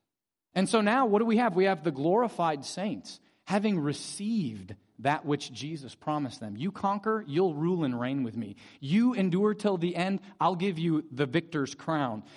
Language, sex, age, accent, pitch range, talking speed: English, male, 30-49, American, 135-190 Hz, 185 wpm